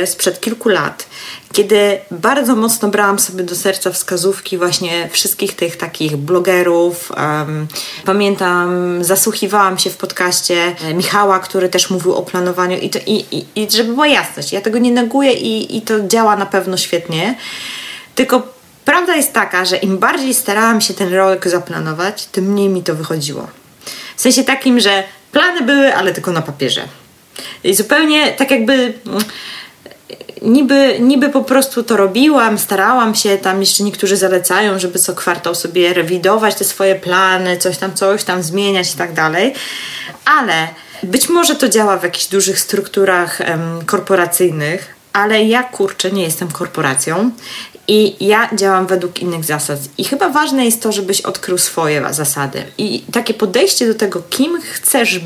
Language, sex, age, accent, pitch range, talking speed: Polish, female, 20-39, native, 180-225 Hz, 160 wpm